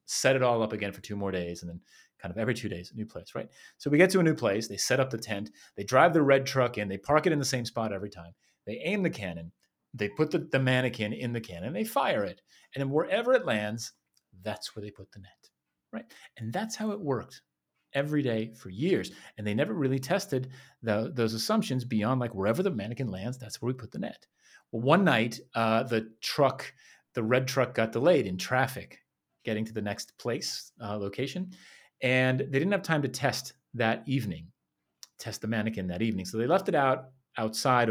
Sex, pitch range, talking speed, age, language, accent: male, 105-140 Hz, 225 wpm, 30-49, English, American